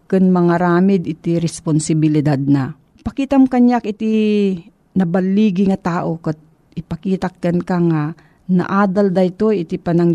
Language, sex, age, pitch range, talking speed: Filipino, female, 40-59, 165-200 Hz, 110 wpm